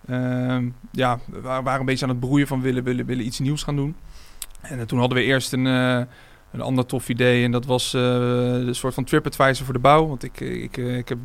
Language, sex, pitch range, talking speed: Dutch, male, 125-140 Hz, 240 wpm